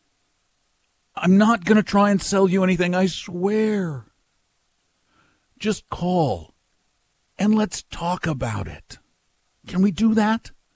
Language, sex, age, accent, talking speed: English, male, 60-79, American, 125 wpm